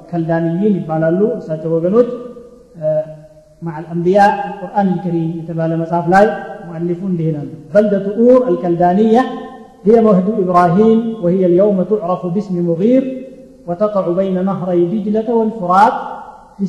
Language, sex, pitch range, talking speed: Amharic, male, 170-210 Hz, 105 wpm